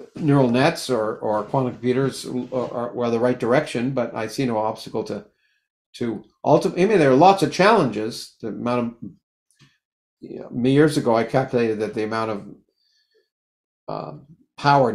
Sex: male